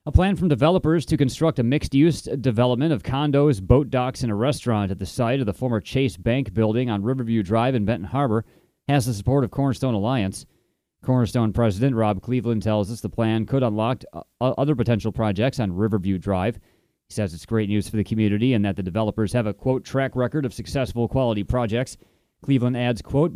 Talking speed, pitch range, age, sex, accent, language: 200 wpm, 105-135 Hz, 30-49, male, American, English